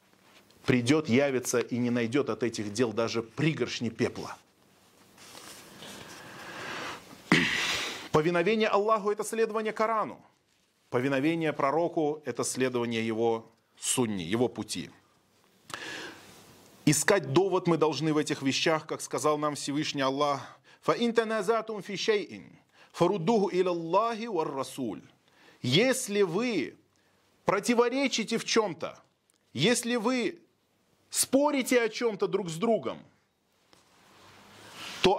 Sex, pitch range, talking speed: male, 145-225 Hz, 85 wpm